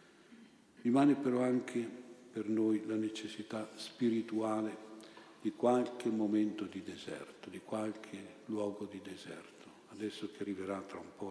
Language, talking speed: Italian, 125 wpm